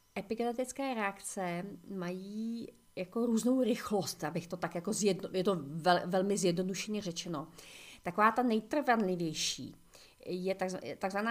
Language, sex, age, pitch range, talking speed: Czech, female, 40-59, 180-220 Hz, 115 wpm